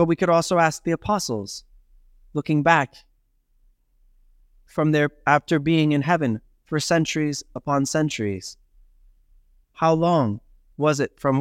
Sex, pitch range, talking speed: male, 105-155 Hz, 125 wpm